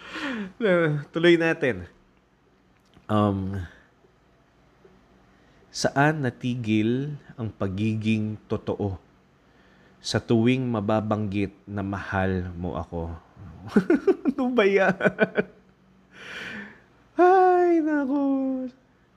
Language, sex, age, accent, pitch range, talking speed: English, male, 20-39, Filipino, 95-125 Hz, 55 wpm